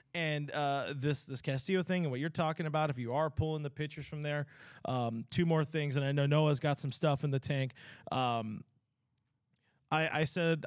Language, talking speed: English, 210 wpm